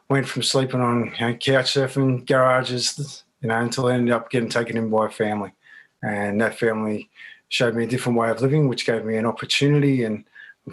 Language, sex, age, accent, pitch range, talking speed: English, male, 20-39, Australian, 115-135 Hz, 215 wpm